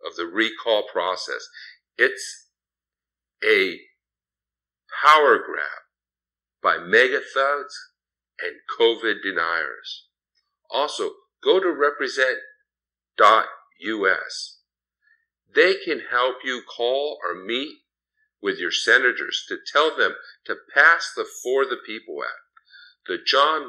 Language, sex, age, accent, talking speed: English, male, 50-69, American, 100 wpm